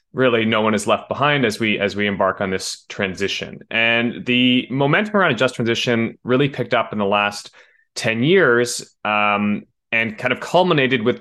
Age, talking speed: 20-39, 185 wpm